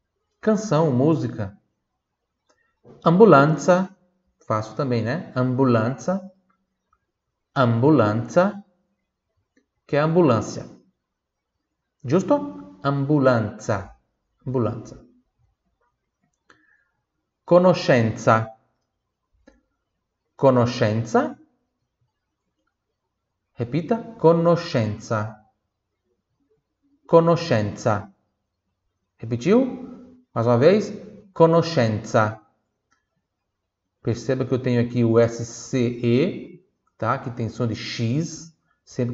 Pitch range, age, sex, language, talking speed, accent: 110-160 Hz, 40-59, male, Italian, 60 wpm, native